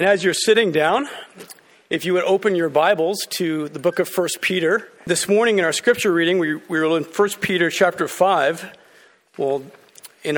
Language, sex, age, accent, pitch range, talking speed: English, male, 50-69, American, 145-190 Hz, 190 wpm